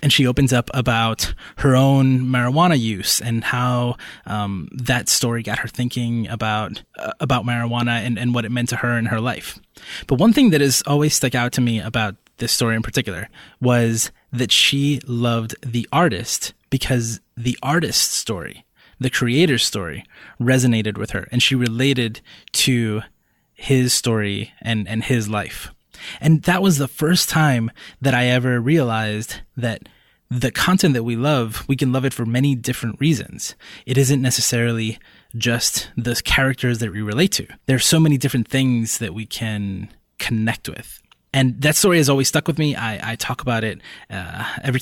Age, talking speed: 20-39, 175 wpm